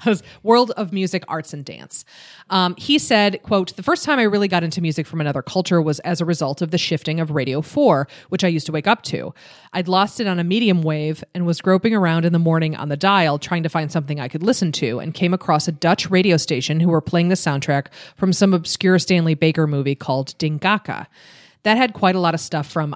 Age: 30-49